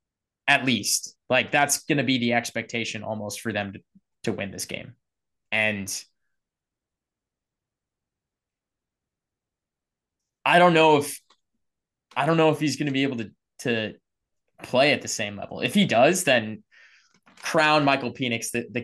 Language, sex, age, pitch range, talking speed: English, male, 20-39, 110-135 Hz, 150 wpm